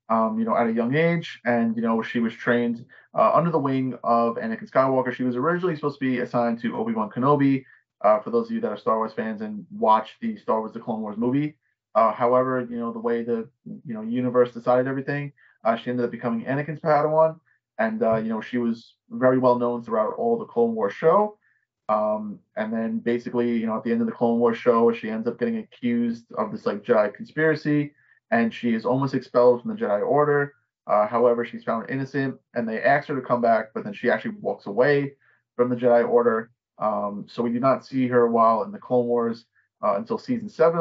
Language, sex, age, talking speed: English, male, 20-39, 225 wpm